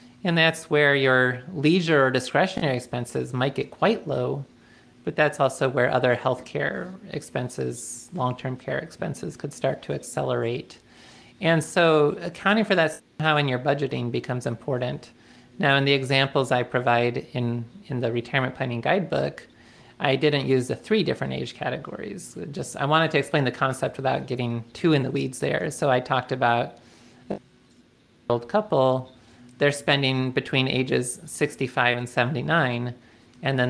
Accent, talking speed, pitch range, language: American, 155 wpm, 120-150 Hz, English